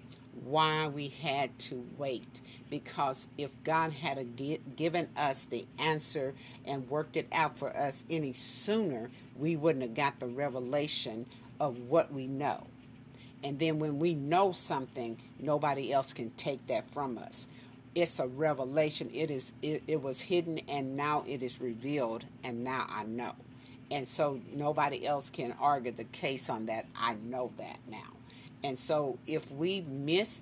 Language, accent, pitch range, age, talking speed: English, American, 125-145 Hz, 50-69, 160 wpm